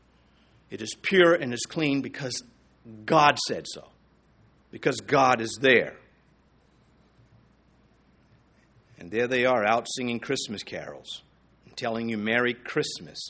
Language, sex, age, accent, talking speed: English, male, 50-69, American, 120 wpm